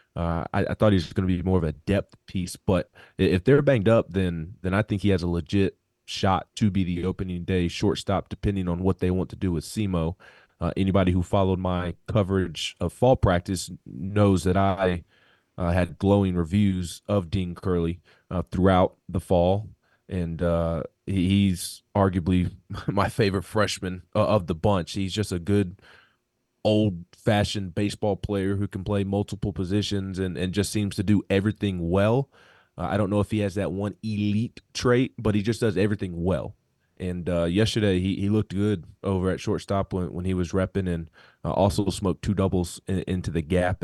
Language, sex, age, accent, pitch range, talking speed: English, male, 20-39, American, 90-105 Hz, 190 wpm